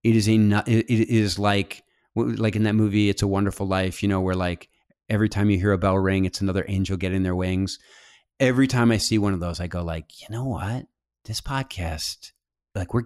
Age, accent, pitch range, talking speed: 30-49, American, 90-110 Hz, 220 wpm